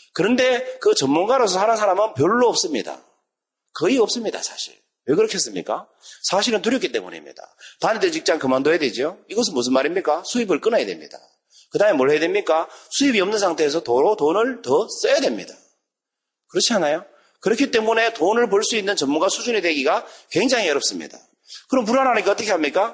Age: 40-59